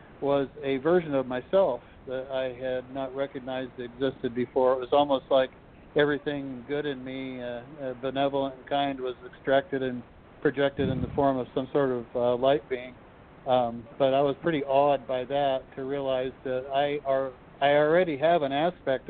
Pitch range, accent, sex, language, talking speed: 130-140 Hz, American, male, English, 180 wpm